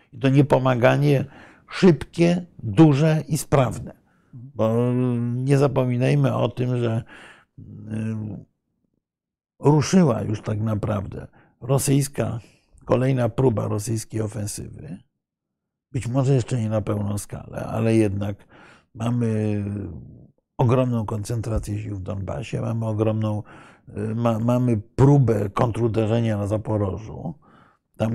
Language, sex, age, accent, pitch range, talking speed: Polish, male, 60-79, native, 110-135 Hz, 100 wpm